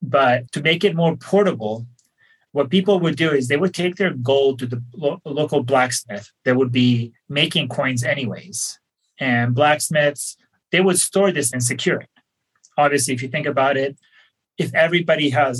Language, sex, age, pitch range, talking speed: English, male, 30-49, 130-160 Hz, 175 wpm